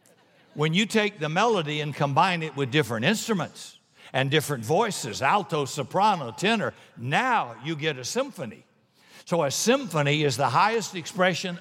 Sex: male